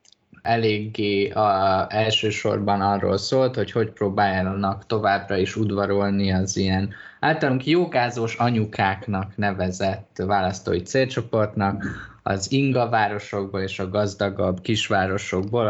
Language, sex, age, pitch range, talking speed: Hungarian, male, 20-39, 95-110 Hz, 100 wpm